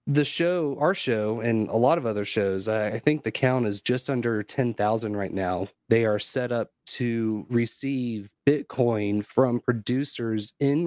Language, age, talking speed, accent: English, 30-49, 165 wpm, American